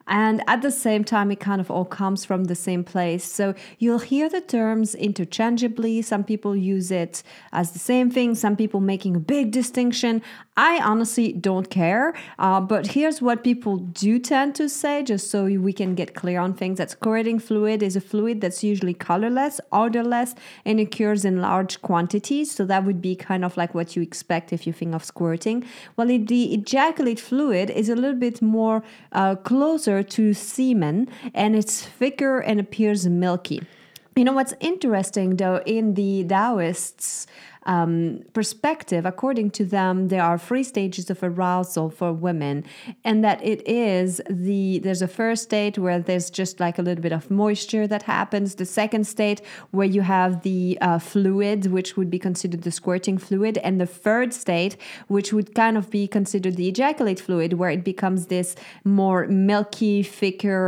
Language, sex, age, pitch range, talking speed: English, female, 30-49, 185-225 Hz, 180 wpm